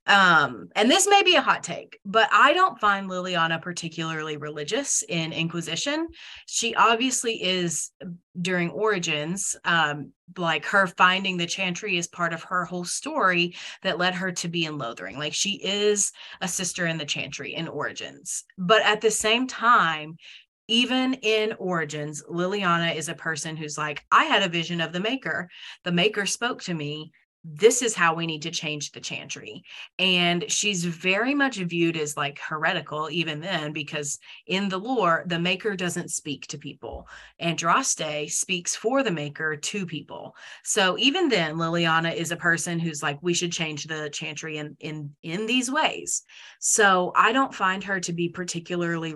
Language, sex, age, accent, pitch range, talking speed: English, female, 30-49, American, 160-200 Hz, 170 wpm